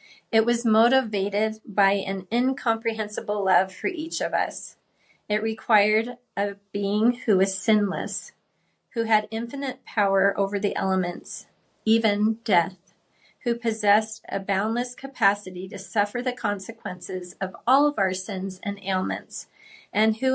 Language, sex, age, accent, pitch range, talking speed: English, female, 30-49, American, 195-230 Hz, 135 wpm